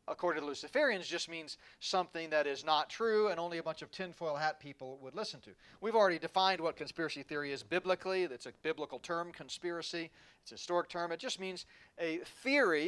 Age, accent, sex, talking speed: 40-59, American, male, 200 wpm